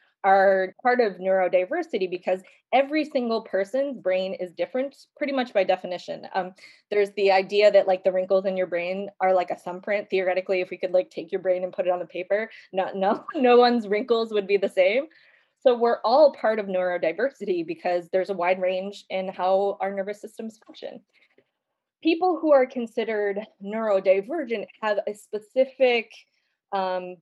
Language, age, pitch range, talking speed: English, 20-39, 185-220 Hz, 175 wpm